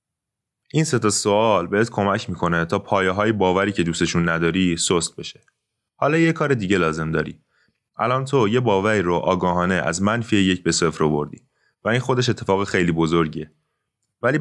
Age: 30-49